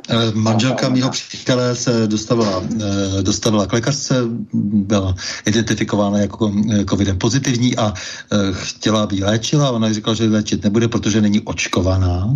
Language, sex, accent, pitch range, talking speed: Czech, male, native, 105-115 Hz, 125 wpm